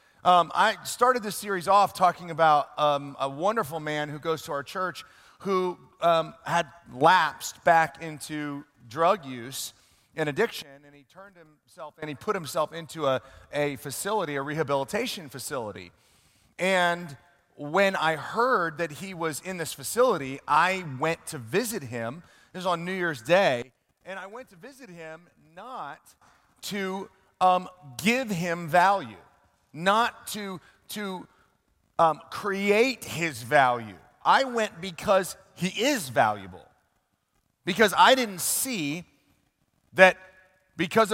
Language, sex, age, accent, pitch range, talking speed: English, male, 30-49, American, 150-200 Hz, 135 wpm